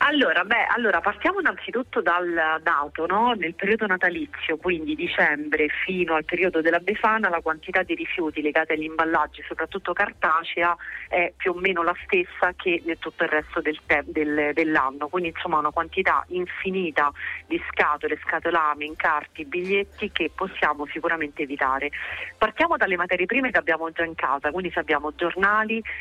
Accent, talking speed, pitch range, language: native, 160 wpm, 155-190 Hz, Italian